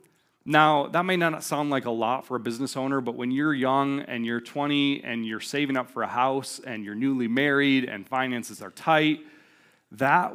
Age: 30-49